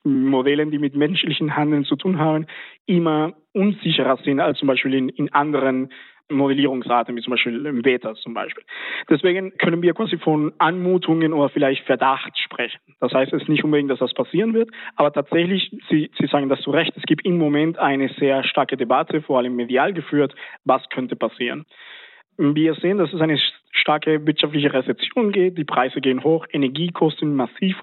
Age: 20-39